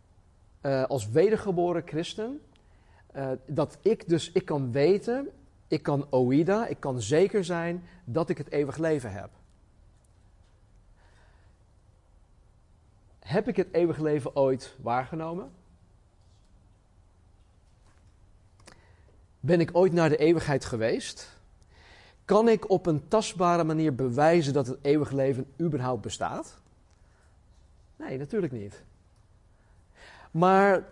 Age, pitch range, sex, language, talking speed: 40-59, 95-155 Hz, male, Dutch, 105 wpm